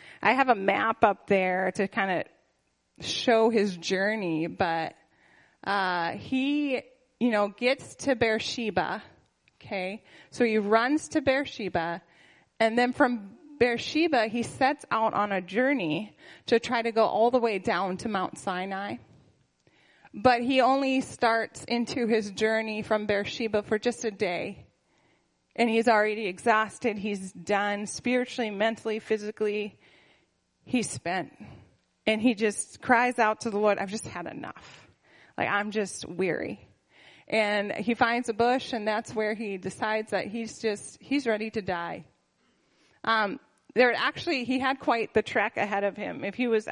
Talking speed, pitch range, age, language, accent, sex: 150 wpm, 195-240 Hz, 20-39, English, American, female